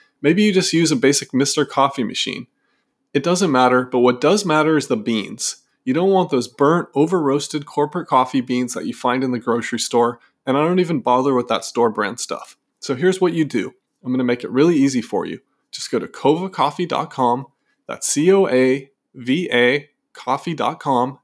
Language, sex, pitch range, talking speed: English, male, 125-170 Hz, 185 wpm